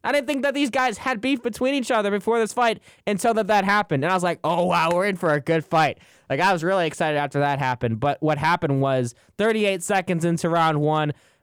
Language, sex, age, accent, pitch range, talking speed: English, male, 20-39, American, 135-175 Hz, 245 wpm